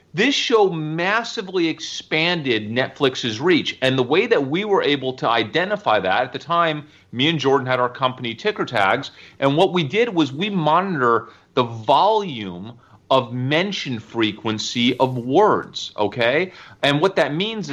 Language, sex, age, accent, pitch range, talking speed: English, male, 40-59, American, 120-165 Hz, 155 wpm